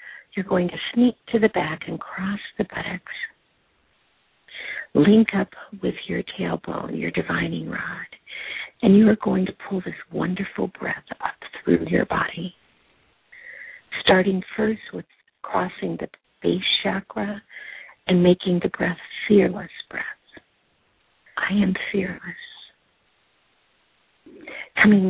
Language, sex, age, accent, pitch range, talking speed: English, female, 50-69, American, 185-220 Hz, 115 wpm